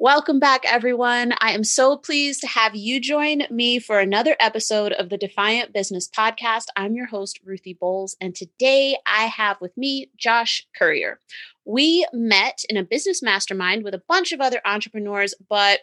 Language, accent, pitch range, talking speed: English, American, 195-260 Hz, 175 wpm